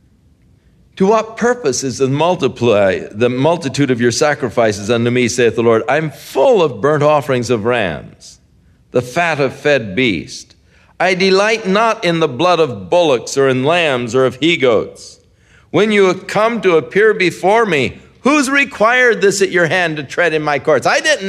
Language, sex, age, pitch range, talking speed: English, male, 50-69, 140-230 Hz, 175 wpm